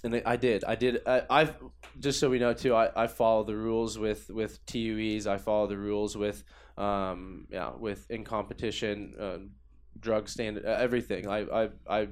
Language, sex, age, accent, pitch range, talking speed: English, male, 20-39, American, 100-120 Hz, 180 wpm